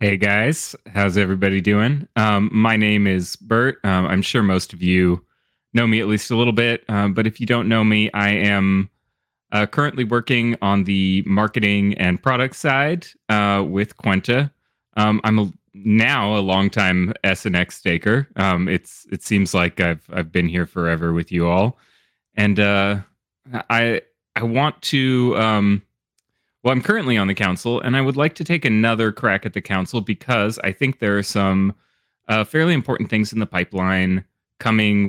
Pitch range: 95-115 Hz